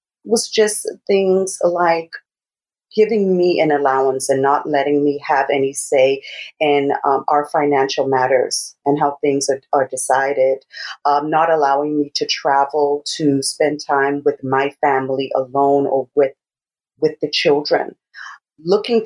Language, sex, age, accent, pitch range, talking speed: English, female, 40-59, American, 145-180 Hz, 140 wpm